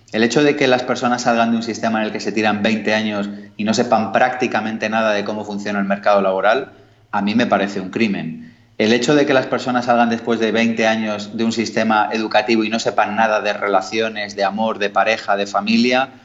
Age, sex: 30-49, male